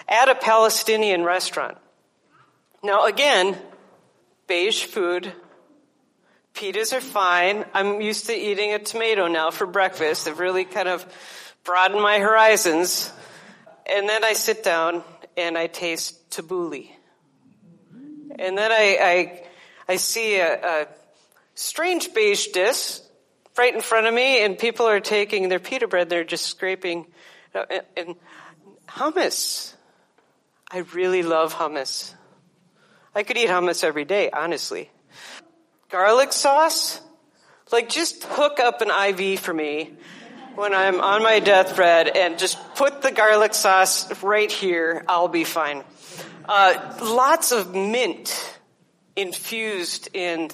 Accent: American